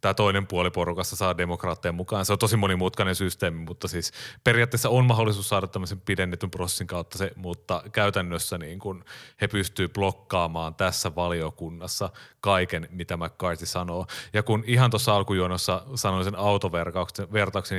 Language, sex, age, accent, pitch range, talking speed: Finnish, male, 30-49, native, 90-115 Hz, 150 wpm